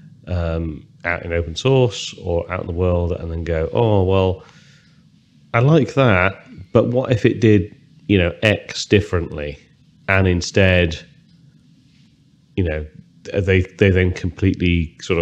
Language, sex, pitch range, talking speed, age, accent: English, male, 85-105 Hz, 140 wpm, 30-49, British